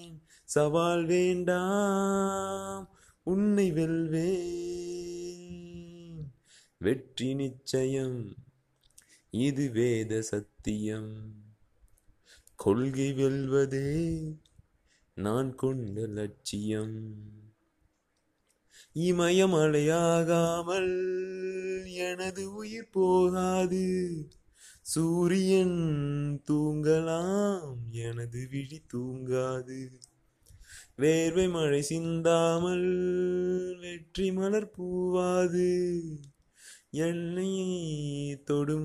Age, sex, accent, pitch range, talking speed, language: 30-49, male, native, 125-180 Hz, 50 wpm, Tamil